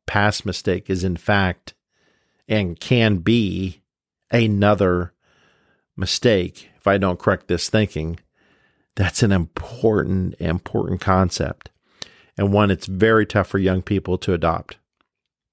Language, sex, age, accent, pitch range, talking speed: English, male, 50-69, American, 90-105 Hz, 120 wpm